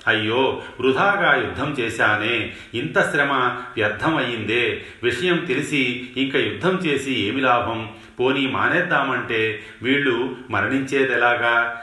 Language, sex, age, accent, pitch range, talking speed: Telugu, male, 40-59, native, 105-130 Hz, 90 wpm